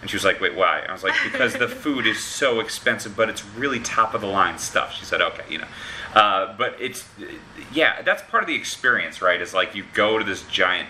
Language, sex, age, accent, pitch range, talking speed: English, male, 30-49, American, 95-115 Hz, 255 wpm